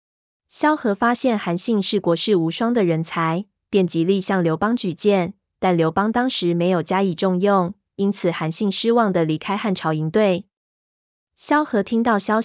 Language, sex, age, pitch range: Chinese, female, 20-39, 175-210 Hz